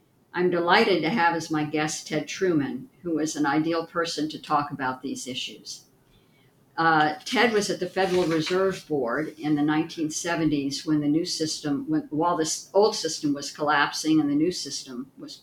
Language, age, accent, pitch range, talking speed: English, 50-69, American, 145-175 Hz, 180 wpm